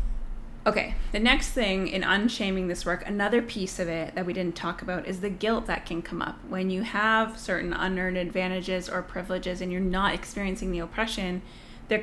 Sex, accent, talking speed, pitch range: female, American, 195 wpm, 185-215 Hz